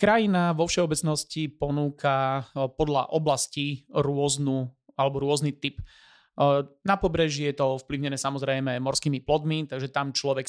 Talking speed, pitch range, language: 120 wpm, 135-155 Hz, Slovak